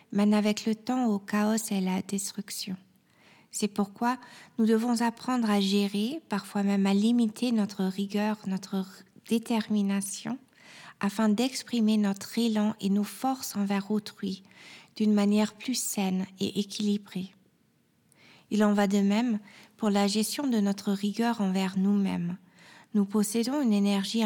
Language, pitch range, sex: French, 195-225 Hz, female